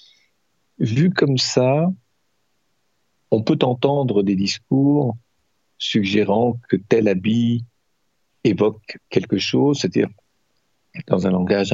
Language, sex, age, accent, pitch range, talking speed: French, male, 50-69, French, 100-120 Hz, 95 wpm